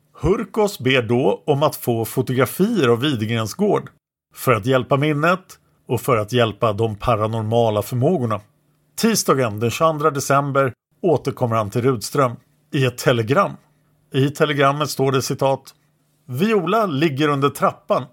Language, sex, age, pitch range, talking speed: English, male, 50-69, 125-170 Hz, 130 wpm